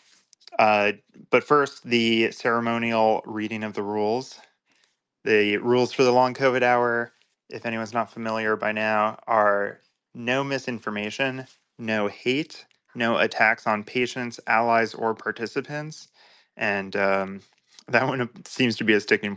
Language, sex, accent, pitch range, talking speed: English, male, American, 110-130 Hz, 135 wpm